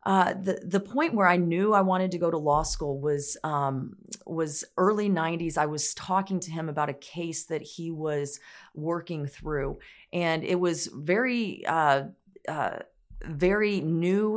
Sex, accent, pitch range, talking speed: female, American, 145-170 Hz, 165 wpm